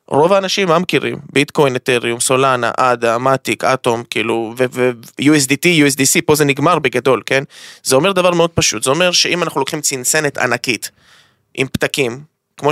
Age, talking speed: 20-39, 155 wpm